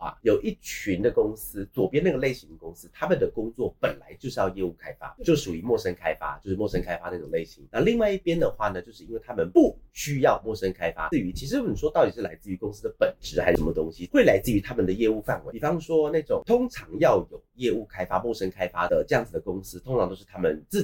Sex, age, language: male, 30-49, Chinese